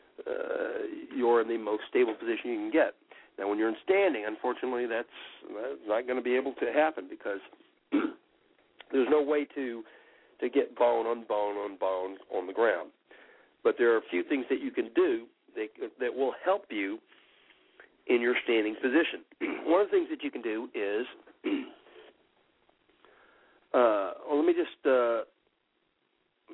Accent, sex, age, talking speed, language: American, male, 60-79, 170 wpm, English